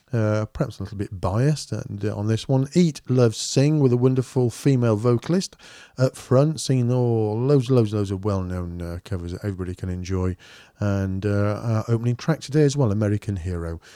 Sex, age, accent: male, 40-59, British